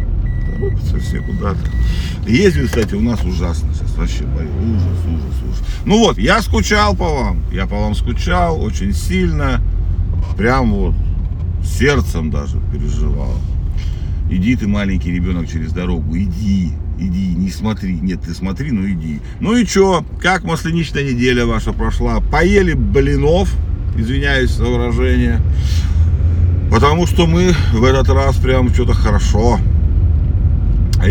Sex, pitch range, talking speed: male, 85-105 Hz, 130 wpm